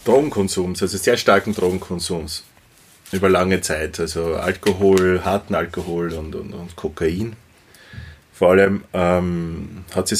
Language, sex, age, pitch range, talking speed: German, male, 30-49, 90-100 Hz, 125 wpm